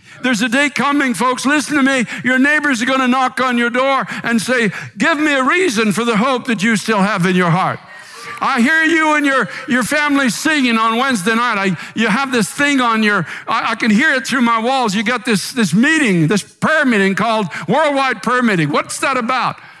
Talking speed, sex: 225 wpm, male